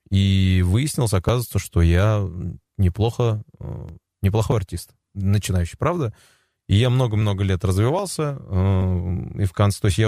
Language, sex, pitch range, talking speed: Russian, male, 95-110 Hz, 125 wpm